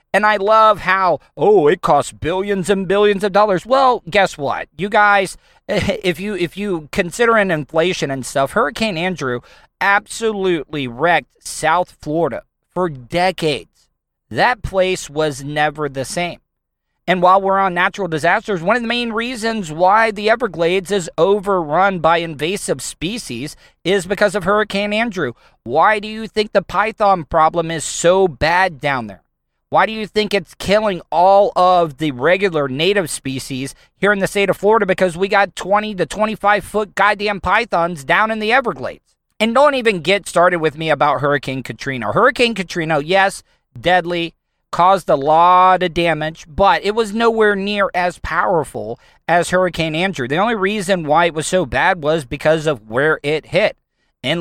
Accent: American